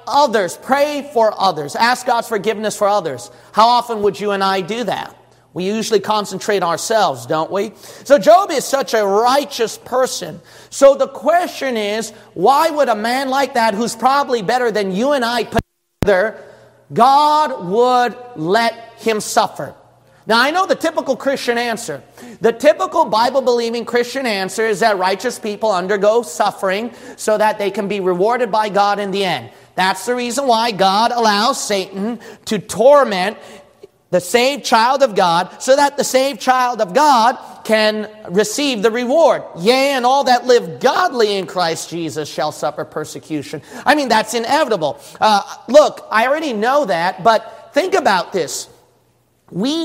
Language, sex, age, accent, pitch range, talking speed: English, male, 40-59, American, 200-255 Hz, 160 wpm